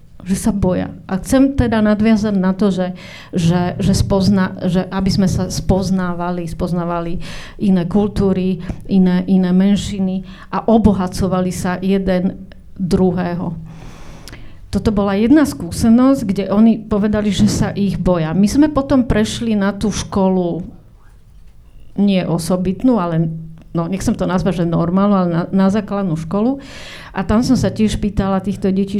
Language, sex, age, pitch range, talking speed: Slovak, female, 40-59, 185-215 Hz, 145 wpm